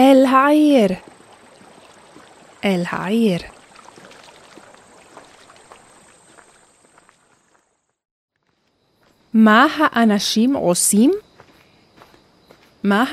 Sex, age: female, 30-49